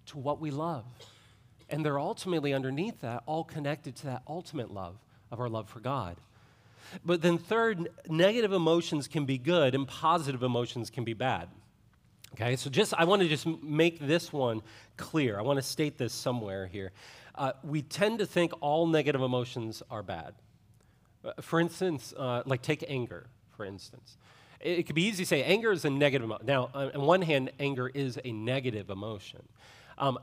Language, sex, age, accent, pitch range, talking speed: English, male, 40-59, American, 115-155 Hz, 190 wpm